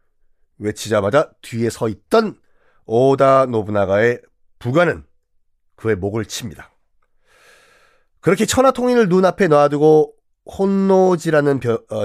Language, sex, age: Korean, male, 40-59